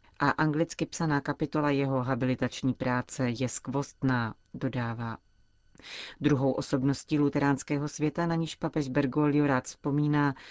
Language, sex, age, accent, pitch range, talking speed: Czech, female, 40-59, native, 130-155 Hz, 115 wpm